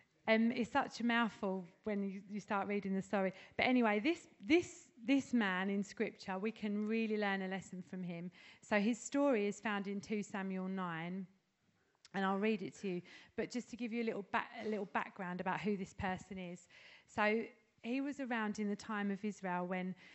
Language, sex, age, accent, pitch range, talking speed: English, female, 30-49, British, 190-225 Hz, 205 wpm